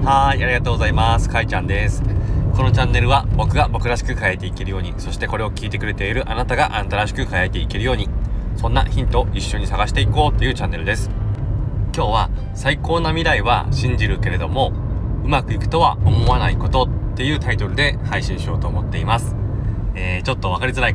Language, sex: Japanese, male